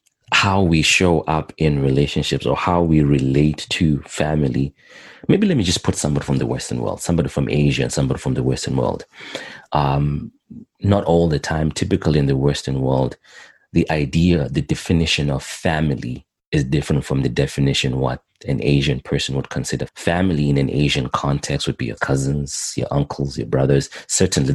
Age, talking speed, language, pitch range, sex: 30-49, 175 wpm, English, 70-80 Hz, male